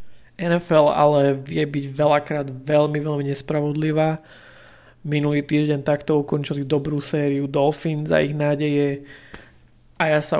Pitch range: 135-150 Hz